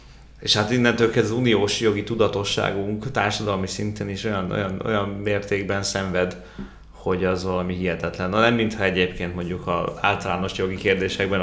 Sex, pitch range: male, 95-110 Hz